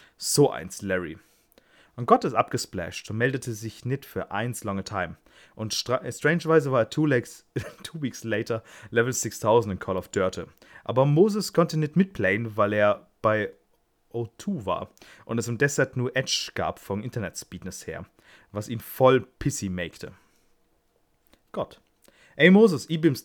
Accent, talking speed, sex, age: German, 155 wpm, male, 30-49